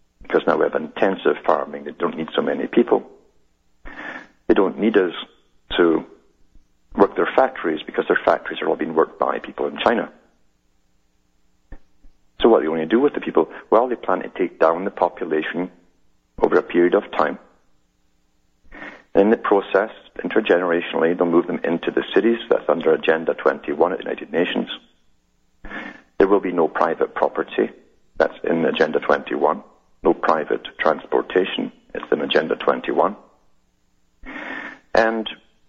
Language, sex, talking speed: English, male, 150 wpm